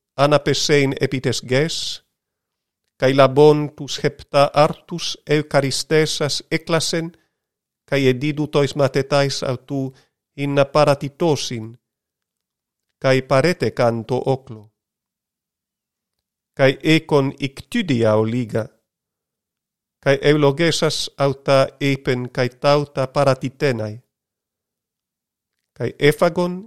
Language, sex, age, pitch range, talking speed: Greek, male, 40-59, 135-150 Hz, 75 wpm